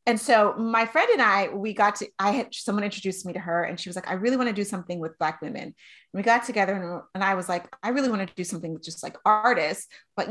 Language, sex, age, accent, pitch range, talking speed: English, female, 30-49, American, 185-235 Hz, 285 wpm